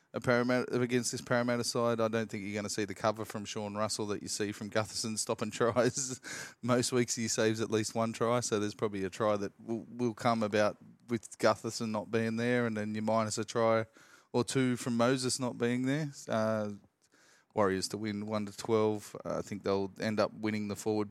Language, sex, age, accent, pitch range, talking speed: English, male, 20-39, Australian, 105-120 Hz, 205 wpm